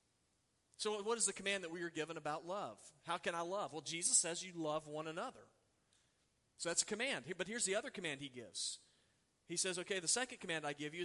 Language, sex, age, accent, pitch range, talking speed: English, male, 40-59, American, 145-180 Hz, 235 wpm